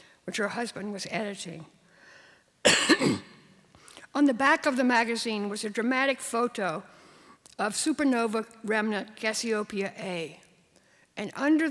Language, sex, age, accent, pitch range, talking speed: English, female, 60-79, American, 190-250 Hz, 115 wpm